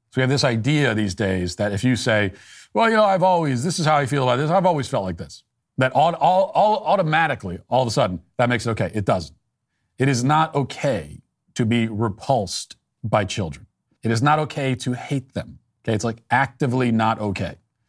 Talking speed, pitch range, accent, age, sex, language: 215 wpm, 115-165 Hz, American, 40-59, male, English